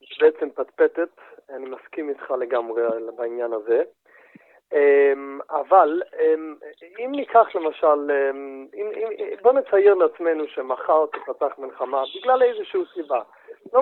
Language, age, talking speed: Hebrew, 30-49, 100 wpm